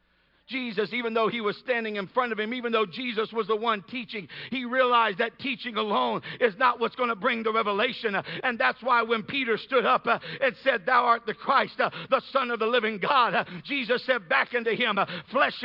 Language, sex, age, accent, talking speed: English, male, 60-79, American, 210 wpm